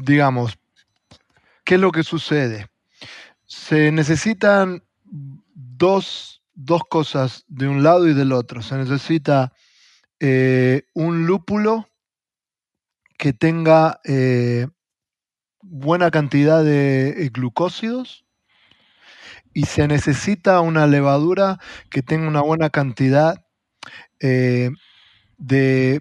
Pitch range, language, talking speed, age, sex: 130-165 Hz, Spanish, 95 wpm, 30-49, male